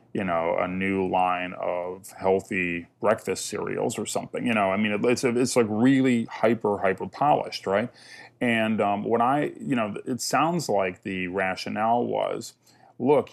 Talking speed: 160 wpm